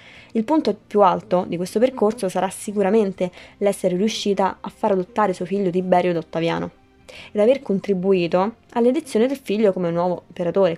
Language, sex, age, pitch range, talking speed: Italian, female, 20-39, 180-230 Hz, 155 wpm